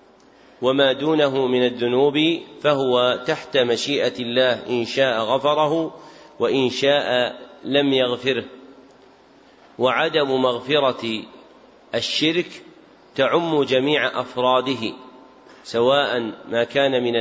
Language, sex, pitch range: Arabic, male, 125-150 Hz